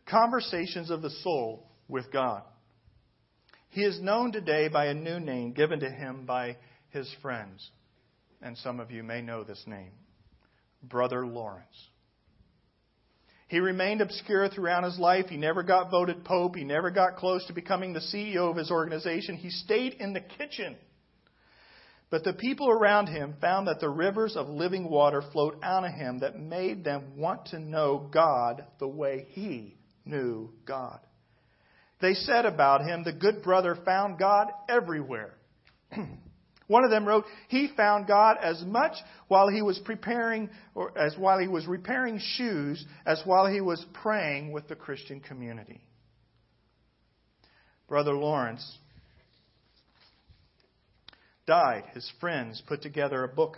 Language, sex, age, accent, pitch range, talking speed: English, male, 50-69, American, 130-190 Hz, 150 wpm